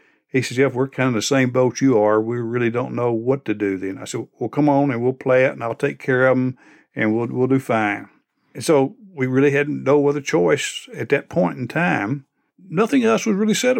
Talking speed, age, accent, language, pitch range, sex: 250 wpm, 60-79, American, English, 120-140 Hz, male